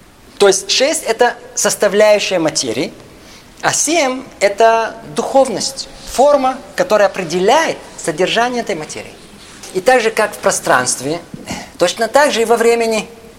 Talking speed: 125 wpm